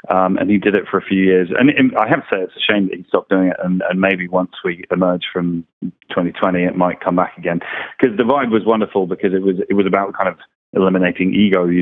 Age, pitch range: 20-39, 95-110 Hz